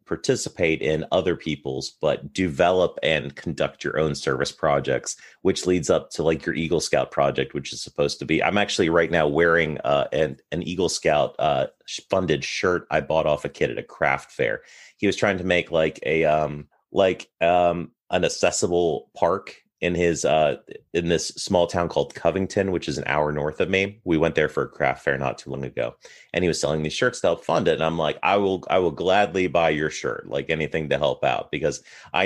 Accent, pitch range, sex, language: American, 75-95 Hz, male, English